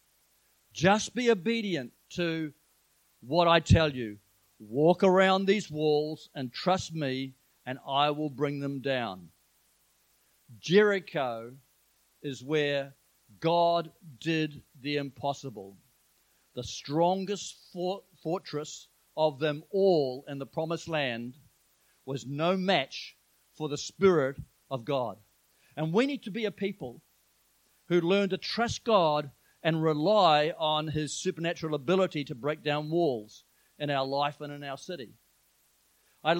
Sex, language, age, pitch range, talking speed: male, English, 50-69, 140-180 Hz, 125 wpm